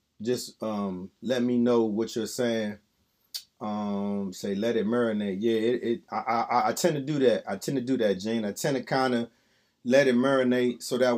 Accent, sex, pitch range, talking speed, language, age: American, male, 110-130 Hz, 210 wpm, English, 30-49